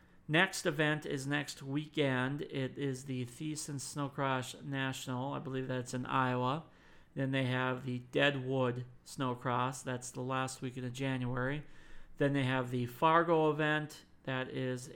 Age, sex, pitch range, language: 40-59, male, 130-160 Hz, English